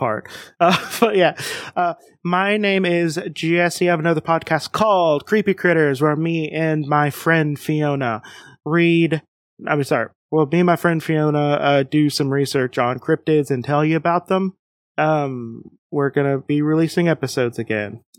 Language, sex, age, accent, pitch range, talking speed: English, male, 30-49, American, 140-170 Hz, 160 wpm